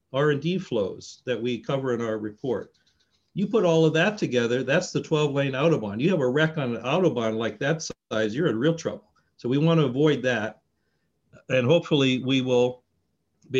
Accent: American